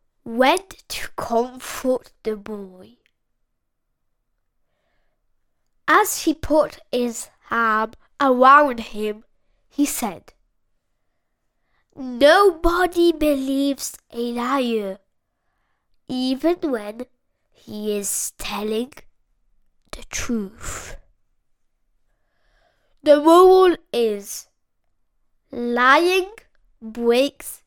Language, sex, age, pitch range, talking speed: Italian, female, 10-29, 230-305 Hz, 65 wpm